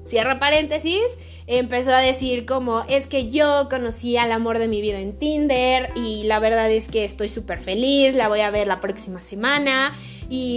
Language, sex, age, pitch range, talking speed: Spanish, female, 20-39, 220-275 Hz, 185 wpm